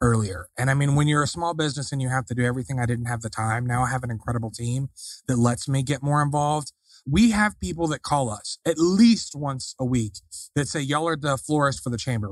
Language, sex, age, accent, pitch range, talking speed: English, male, 20-39, American, 120-140 Hz, 255 wpm